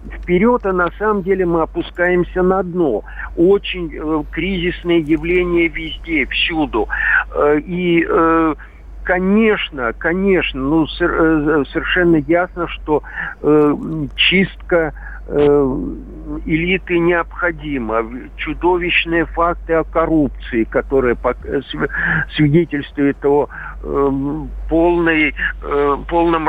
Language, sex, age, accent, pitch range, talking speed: Russian, male, 50-69, native, 145-180 Hz, 90 wpm